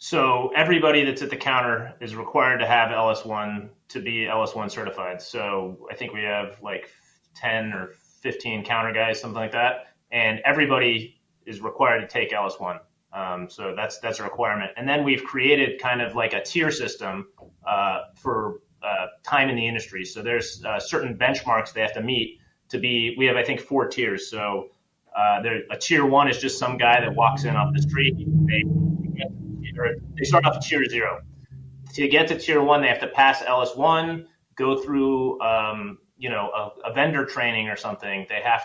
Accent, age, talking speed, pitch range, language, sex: American, 30-49, 195 wpm, 110-140 Hz, English, male